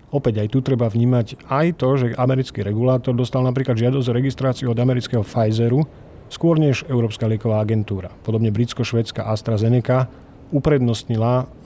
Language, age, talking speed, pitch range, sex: Slovak, 40-59, 135 wpm, 110-140 Hz, male